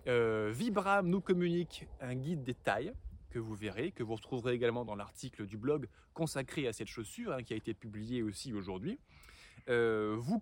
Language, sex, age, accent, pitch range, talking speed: French, male, 20-39, French, 115-155 Hz, 185 wpm